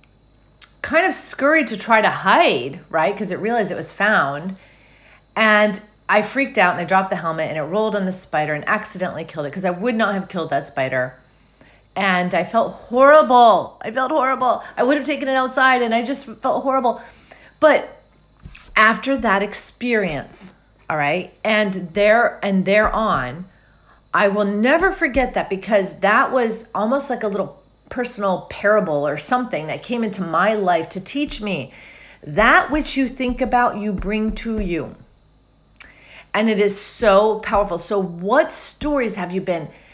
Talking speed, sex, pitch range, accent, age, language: 170 wpm, female, 190-265 Hz, American, 40-59, English